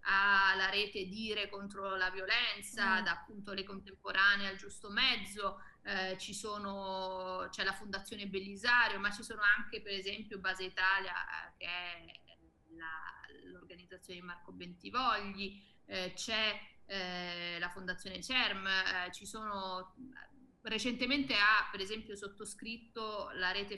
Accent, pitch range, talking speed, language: native, 190-230 Hz, 130 wpm, Italian